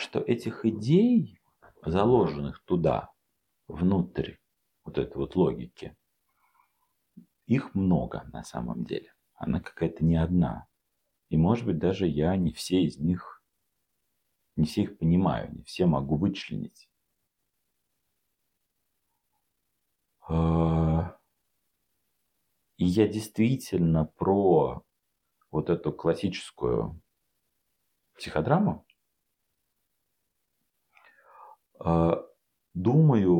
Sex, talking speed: male, 80 wpm